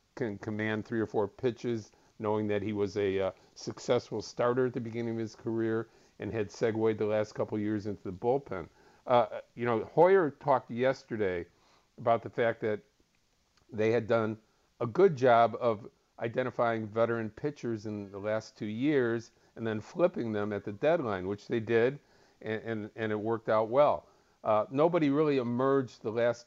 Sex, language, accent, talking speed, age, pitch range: male, English, American, 180 wpm, 50-69, 105-125 Hz